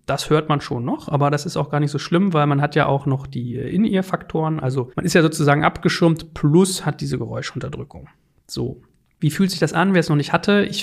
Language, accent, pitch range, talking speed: German, German, 140-170 Hz, 240 wpm